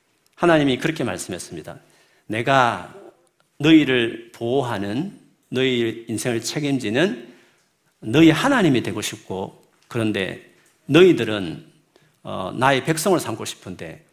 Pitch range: 110-145 Hz